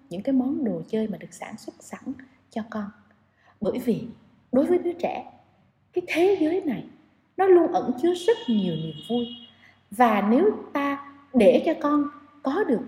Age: 20-39